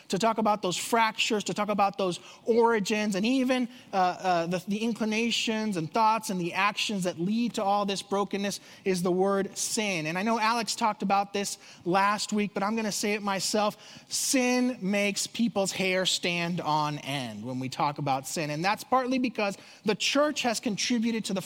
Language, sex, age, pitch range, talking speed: English, male, 30-49, 175-225 Hz, 195 wpm